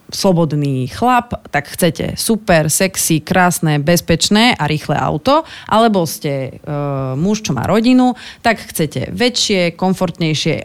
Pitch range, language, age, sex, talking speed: 150-180 Hz, Slovak, 30-49, female, 120 wpm